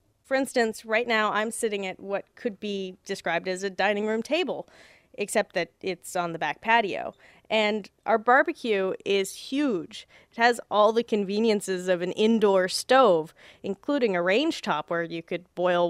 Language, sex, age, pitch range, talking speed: English, female, 30-49, 175-210 Hz, 170 wpm